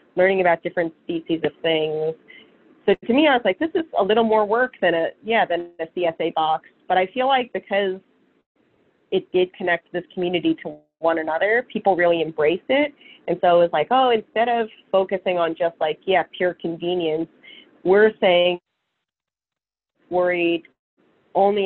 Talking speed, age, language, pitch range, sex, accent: 165 wpm, 30-49, English, 170-200 Hz, female, American